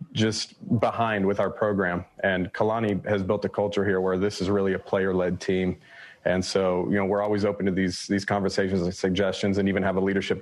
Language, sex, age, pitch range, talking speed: English, male, 30-49, 95-105 Hz, 215 wpm